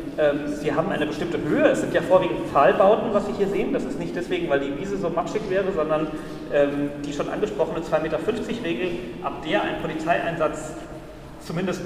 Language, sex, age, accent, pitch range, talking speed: German, male, 40-59, German, 155-210 Hz, 180 wpm